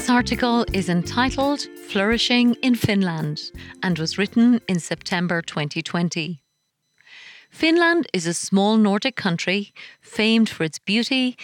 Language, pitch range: English, 170-235 Hz